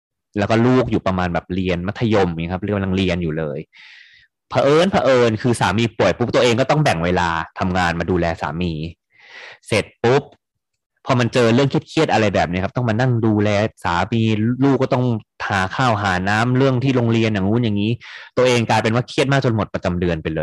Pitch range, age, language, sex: 90-115 Hz, 20-39, Thai, male